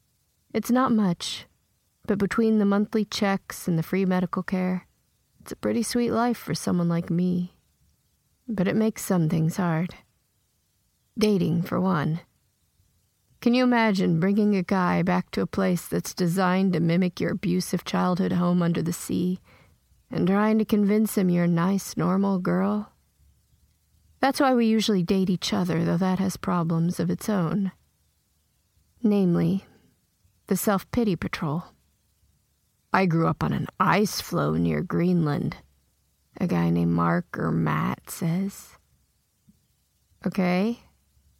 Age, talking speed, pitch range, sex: 30-49, 140 wpm, 165-200 Hz, female